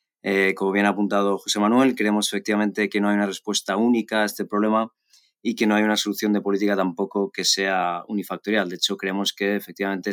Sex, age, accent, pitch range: male, 20-39, Spanish, 100-110 Hz